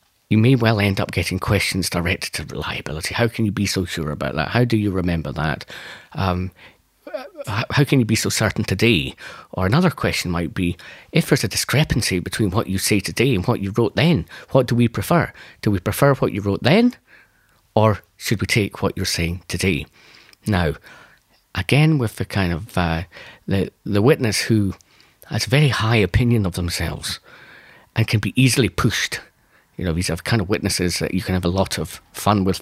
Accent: British